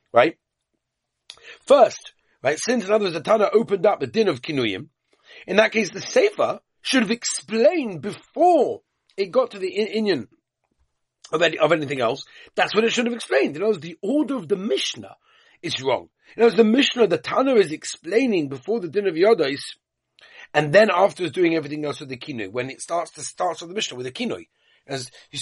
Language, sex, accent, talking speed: English, male, British, 195 wpm